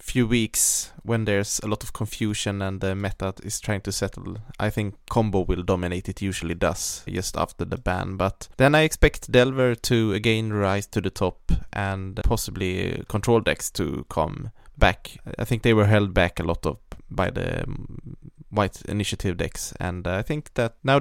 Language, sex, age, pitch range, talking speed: English, male, 20-39, 95-120 Hz, 185 wpm